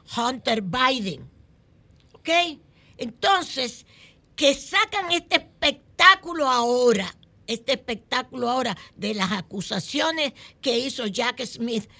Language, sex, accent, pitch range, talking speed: Spanish, female, American, 195-270 Hz, 95 wpm